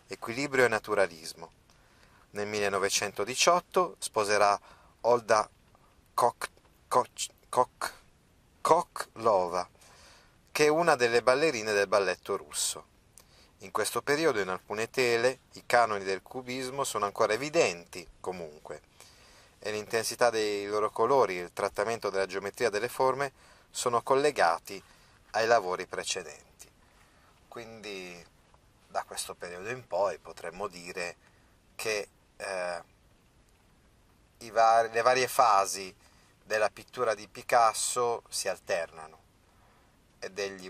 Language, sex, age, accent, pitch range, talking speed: Italian, male, 30-49, native, 90-120 Hz, 105 wpm